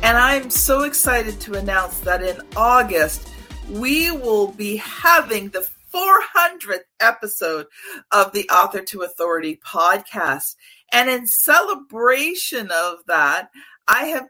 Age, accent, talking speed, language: 50-69, American, 120 wpm, English